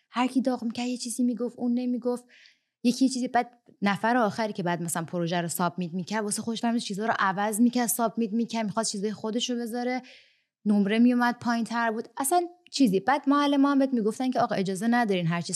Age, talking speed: 20-39, 190 wpm